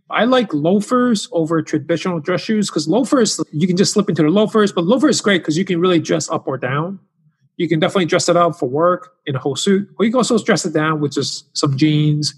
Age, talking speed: 30-49, 245 wpm